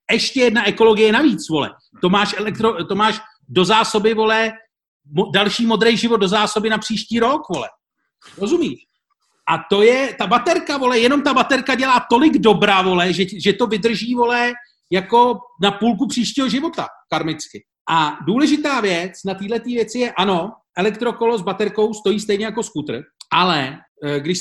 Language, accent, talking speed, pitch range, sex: Czech, native, 160 wpm, 180-235 Hz, male